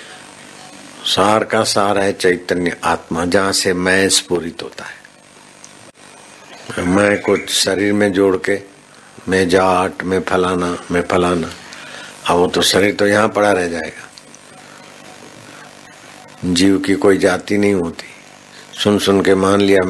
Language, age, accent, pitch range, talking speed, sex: Hindi, 60-79, native, 90-100 Hz, 135 wpm, male